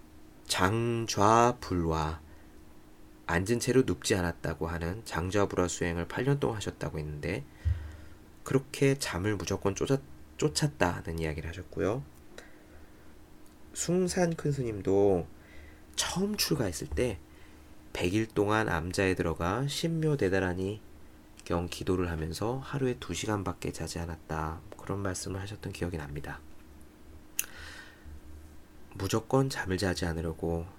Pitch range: 80-105 Hz